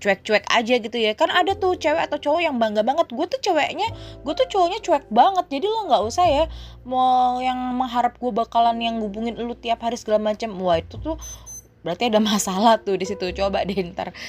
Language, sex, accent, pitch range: Indonesian, female, native, 200-280 Hz